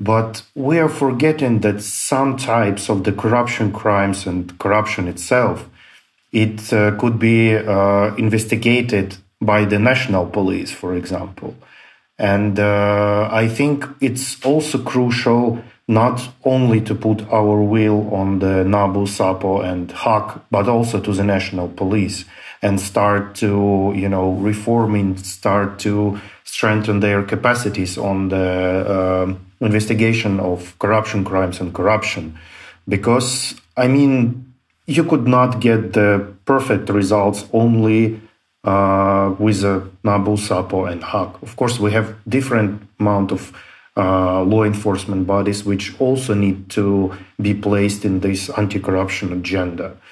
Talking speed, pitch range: 130 wpm, 95-115 Hz